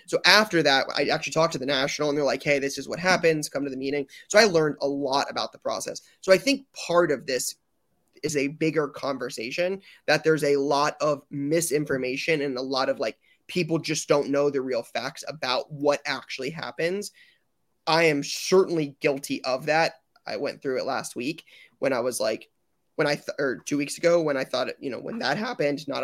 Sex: male